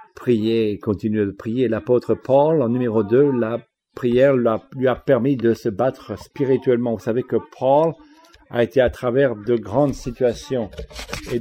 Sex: male